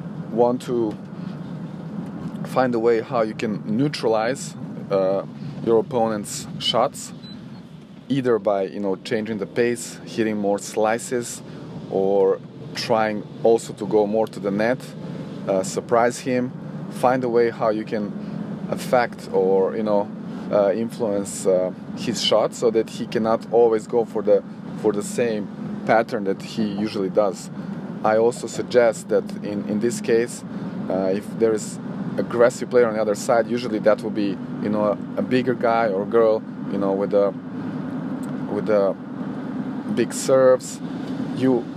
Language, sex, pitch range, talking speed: English, male, 105-170 Hz, 150 wpm